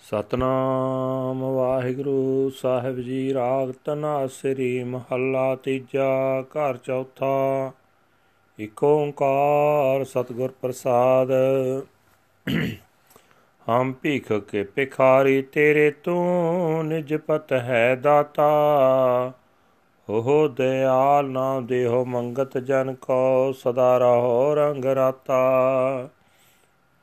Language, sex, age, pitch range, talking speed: Punjabi, male, 40-59, 130-145 Hz, 80 wpm